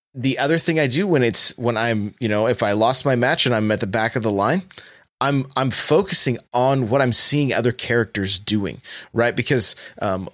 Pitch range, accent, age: 115-140 Hz, American, 20-39